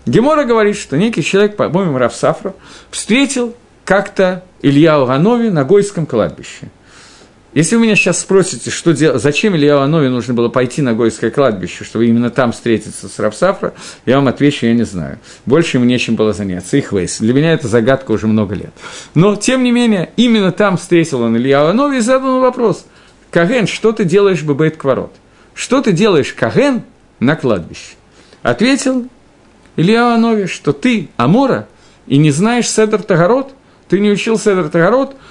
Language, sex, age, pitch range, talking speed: Russian, male, 50-69, 130-220 Hz, 160 wpm